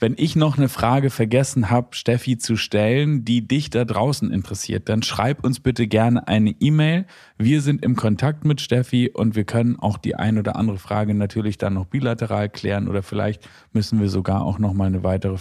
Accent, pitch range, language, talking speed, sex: German, 105-125 Hz, German, 200 wpm, male